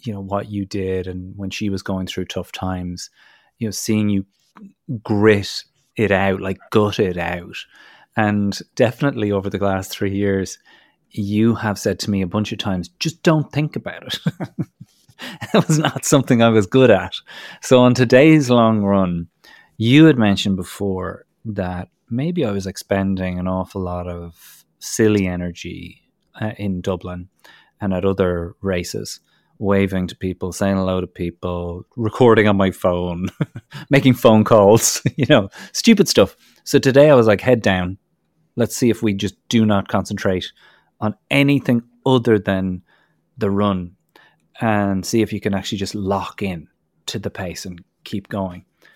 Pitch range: 95-120 Hz